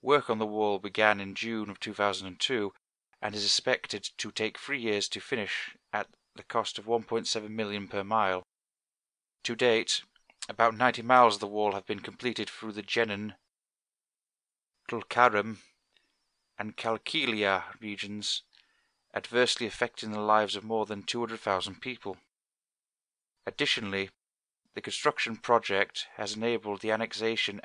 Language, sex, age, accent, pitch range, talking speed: English, male, 30-49, British, 100-115 Hz, 130 wpm